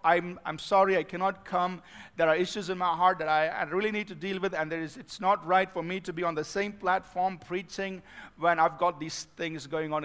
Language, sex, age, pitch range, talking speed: English, male, 50-69, 185-225 Hz, 250 wpm